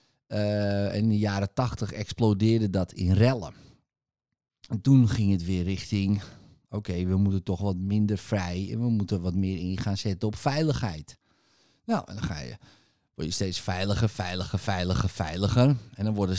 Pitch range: 100-135 Hz